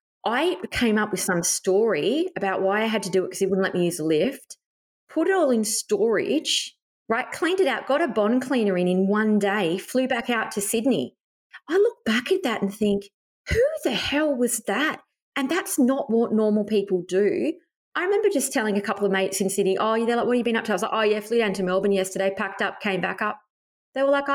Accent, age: Australian, 30-49